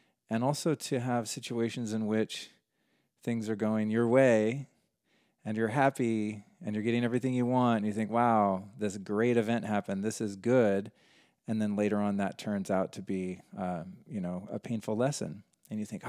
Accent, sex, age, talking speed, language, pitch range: American, male, 40-59, 185 wpm, English, 100-120 Hz